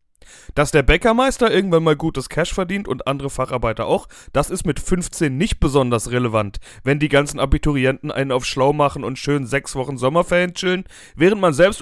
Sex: male